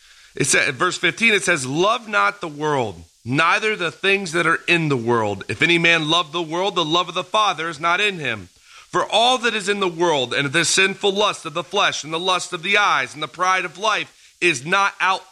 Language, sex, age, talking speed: English, male, 40-59, 240 wpm